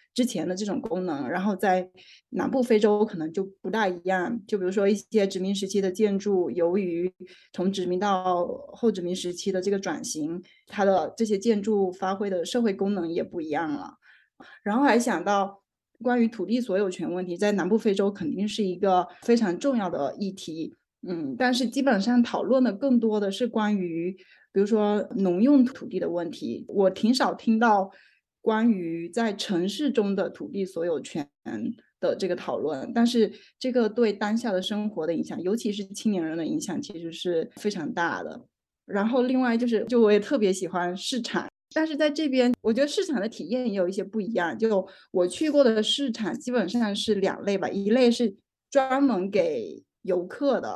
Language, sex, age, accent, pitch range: Chinese, female, 20-39, native, 190-245 Hz